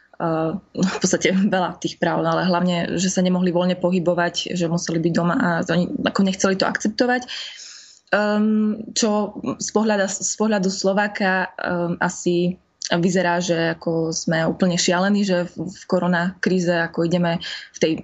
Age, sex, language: 20-39, female, Slovak